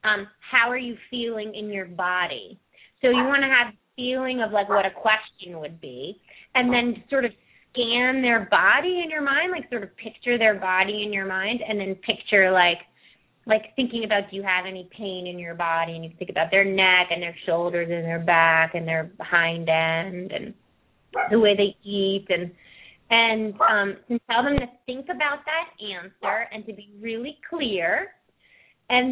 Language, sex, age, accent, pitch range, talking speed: English, female, 30-49, American, 190-240 Hz, 190 wpm